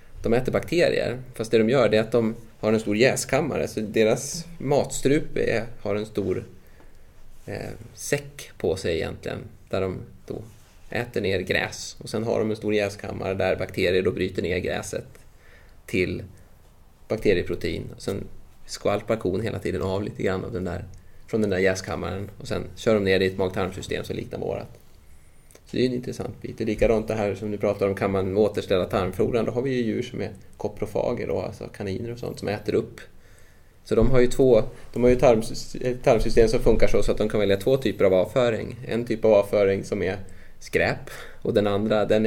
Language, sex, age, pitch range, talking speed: Swedish, male, 20-39, 95-115 Hz, 200 wpm